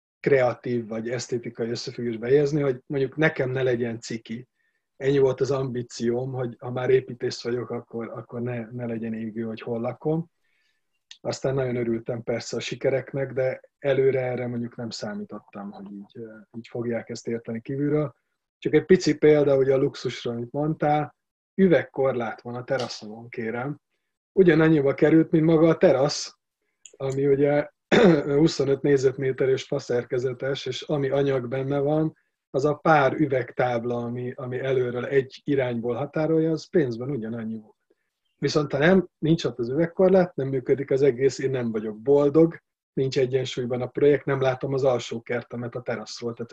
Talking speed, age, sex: 155 wpm, 30-49, male